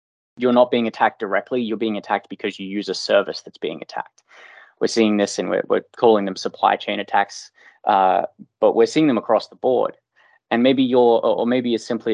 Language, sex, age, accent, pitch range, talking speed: English, male, 20-39, Australian, 100-120 Hz, 210 wpm